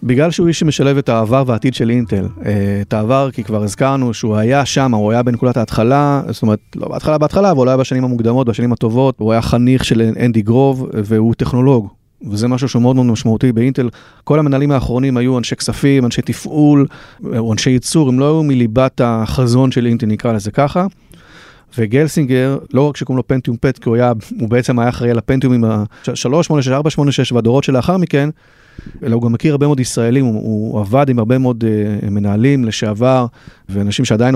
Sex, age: male, 30-49